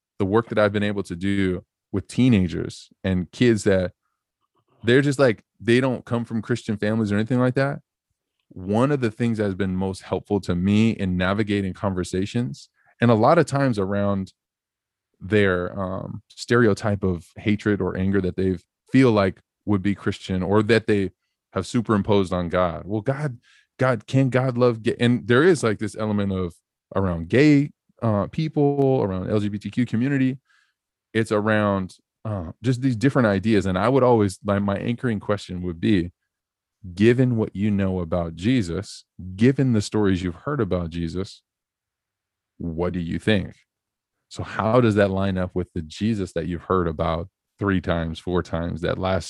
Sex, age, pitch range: male, 20-39, 95-115 Hz